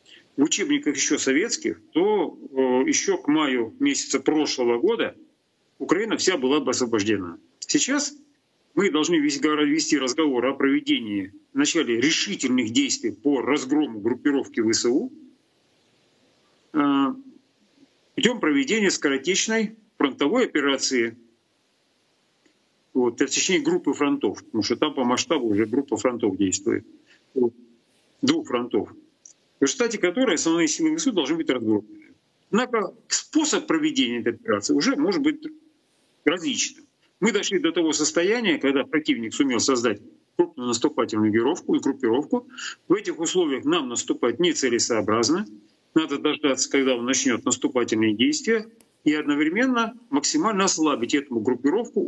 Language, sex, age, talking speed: Russian, male, 40-59, 115 wpm